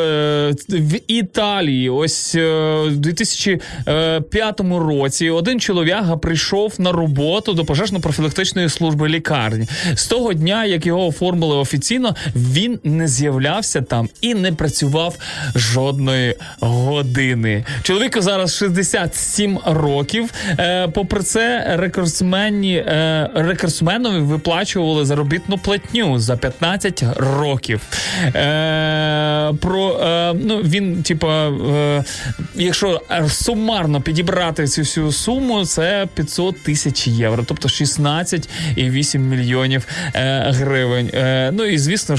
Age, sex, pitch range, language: 20-39, male, 140-175 Hz, Ukrainian